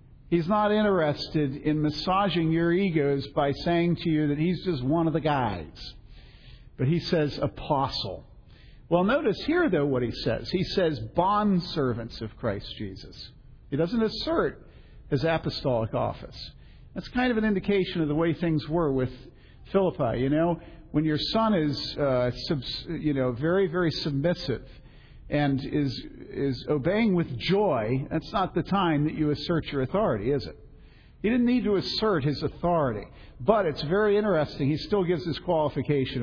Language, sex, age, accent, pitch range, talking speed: English, male, 50-69, American, 135-180 Hz, 165 wpm